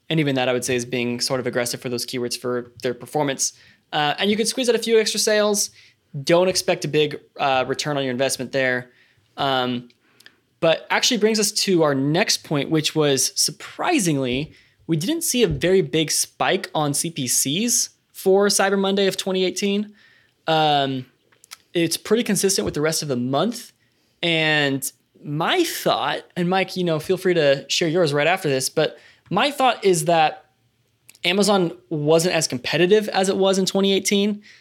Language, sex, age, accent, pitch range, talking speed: English, male, 20-39, American, 130-180 Hz, 175 wpm